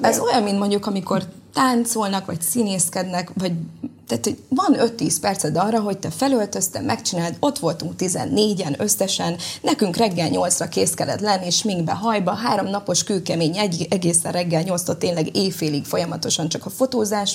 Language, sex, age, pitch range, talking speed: Hungarian, female, 20-39, 170-220 Hz, 145 wpm